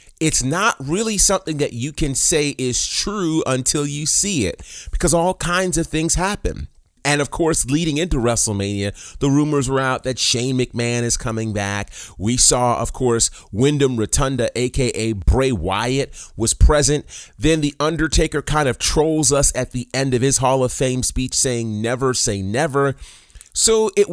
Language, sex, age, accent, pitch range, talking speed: English, male, 30-49, American, 105-145 Hz, 170 wpm